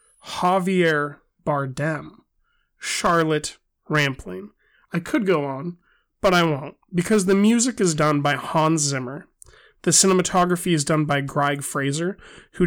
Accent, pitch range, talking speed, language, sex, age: American, 145-180 Hz, 130 wpm, English, male, 30-49